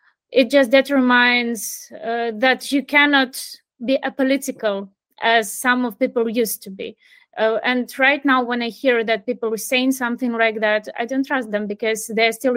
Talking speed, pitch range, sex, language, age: 175 wpm, 215-245 Hz, female, English, 20-39